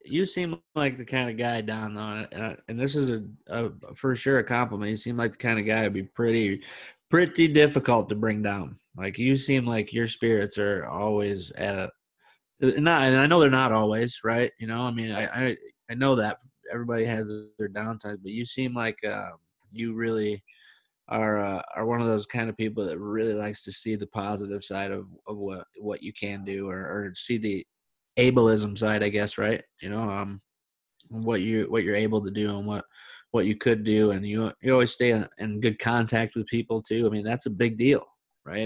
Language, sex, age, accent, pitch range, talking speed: English, male, 20-39, American, 105-120 Hz, 215 wpm